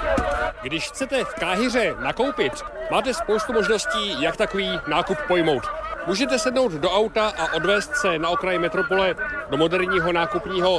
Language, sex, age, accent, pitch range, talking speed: Czech, male, 40-59, native, 175-220 Hz, 140 wpm